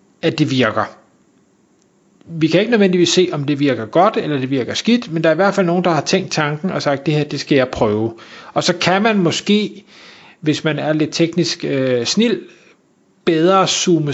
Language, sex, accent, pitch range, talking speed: Danish, male, native, 145-180 Hz, 210 wpm